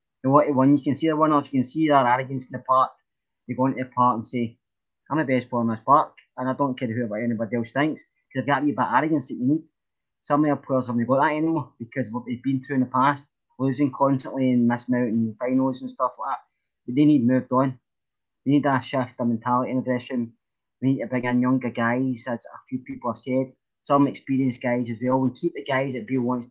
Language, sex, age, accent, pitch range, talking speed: English, male, 20-39, British, 120-140 Hz, 260 wpm